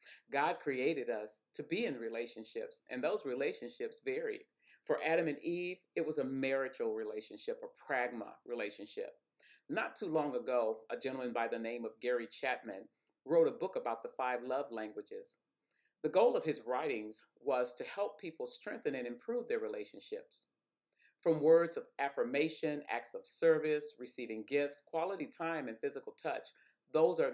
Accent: American